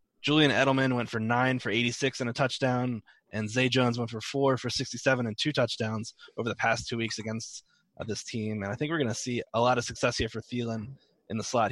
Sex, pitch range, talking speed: male, 115-130 Hz, 240 wpm